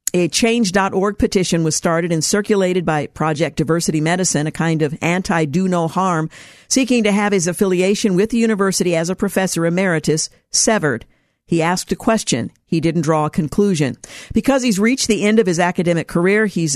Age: 50-69